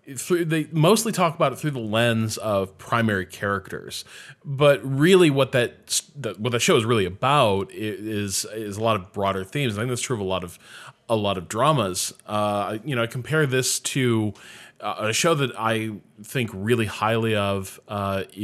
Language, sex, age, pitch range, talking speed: English, male, 20-39, 100-125 Hz, 185 wpm